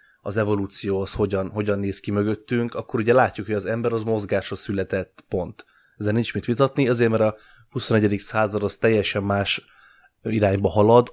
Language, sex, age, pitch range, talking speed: English, male, 20-39, 100-115 Hz, 175 wpm